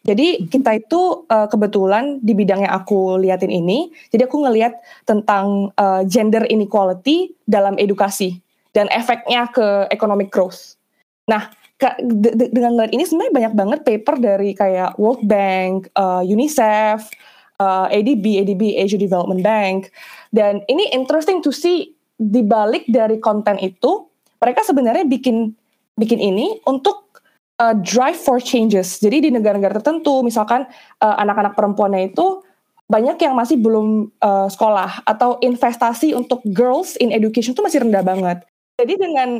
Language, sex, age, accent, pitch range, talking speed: Indonesian, female, 20-39, native, 205-275 Hz, 140 wpm